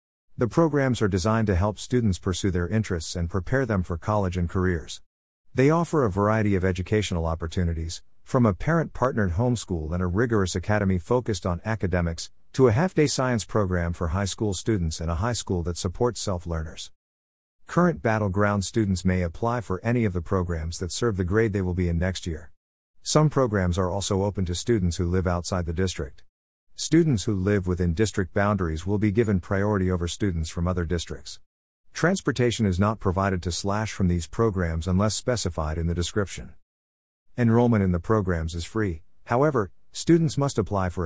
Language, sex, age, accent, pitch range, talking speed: English, male, 50-69, American, 85-110 Hz, 180 wpm